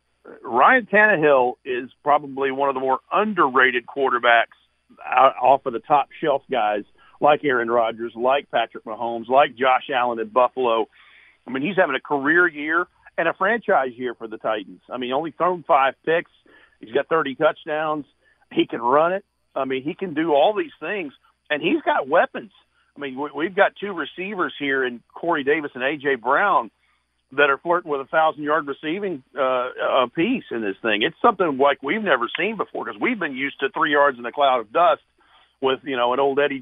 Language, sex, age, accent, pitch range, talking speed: English, male, 50-69, American, 130-185 Hz, 195 wpm